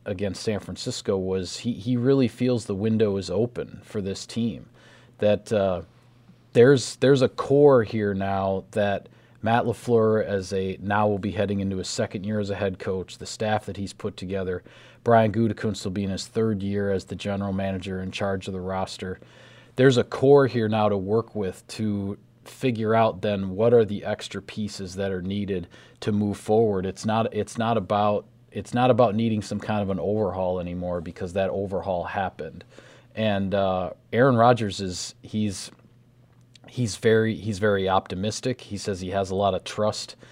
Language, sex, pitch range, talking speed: English, male, 100-120 Hz, 185 wpm